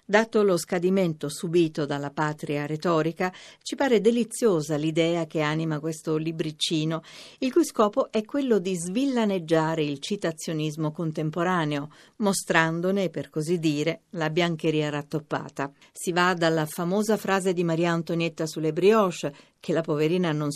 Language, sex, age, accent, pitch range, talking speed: Italian, female, 50-69, native, 155-195 Hz, 135 wpm